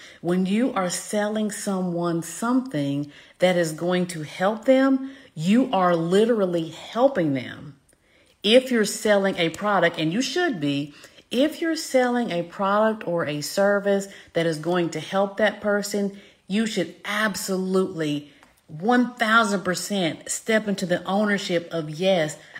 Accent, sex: American, female